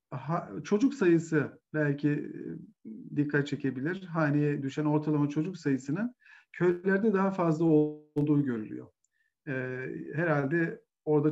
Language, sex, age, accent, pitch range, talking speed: Turkish, male, 50-69, native, 140-185 Hz, 105 wpm